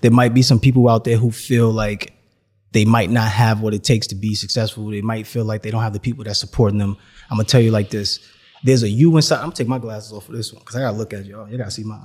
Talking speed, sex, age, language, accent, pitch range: 330 wpm, male, 30-49, English, American, 110-140 Hz